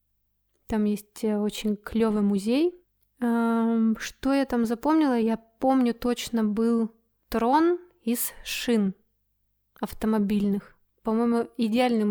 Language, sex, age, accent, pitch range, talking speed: Russian, female, 20-39, native, 210-245 Hz, 95 wpm